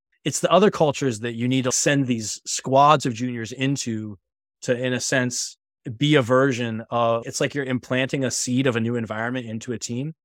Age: 20-39